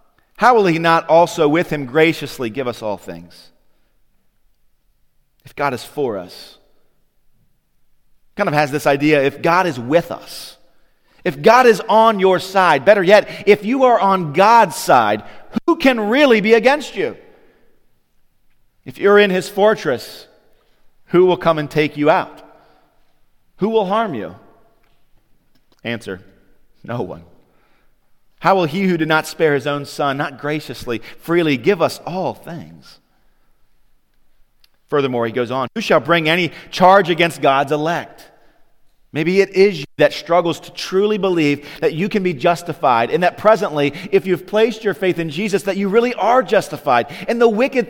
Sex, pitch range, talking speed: male, 145-205 Hz, 160 wpm